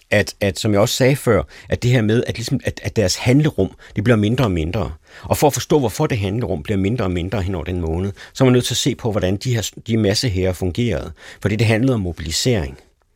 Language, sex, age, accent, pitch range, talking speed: Danish, male, 60-79, native, 90-120 Hz, 260 wpm